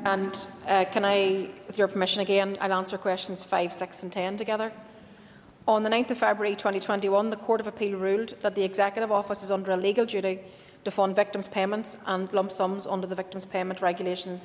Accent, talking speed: Irish, 200 wpm